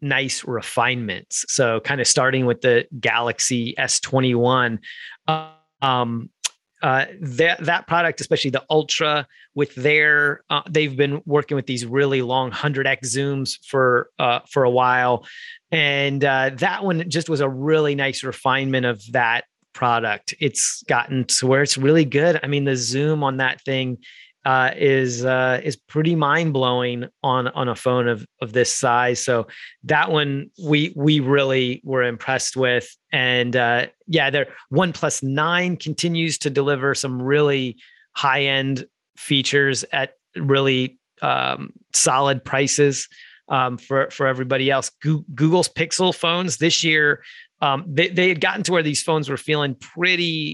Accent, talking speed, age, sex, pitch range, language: American, 155 wpm, 30-49, male, 130-155 Hz, English